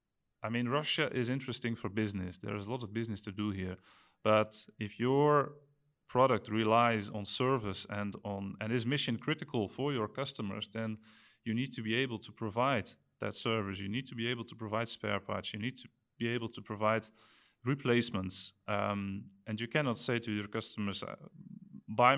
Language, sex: English, male